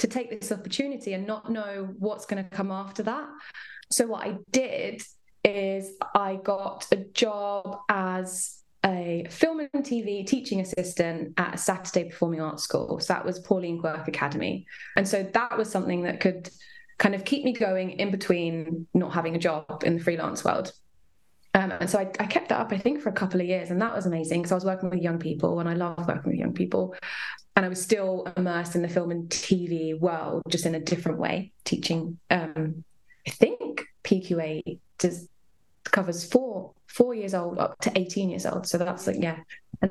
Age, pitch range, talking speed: 20-39, 175-215 Hz, 195 wpm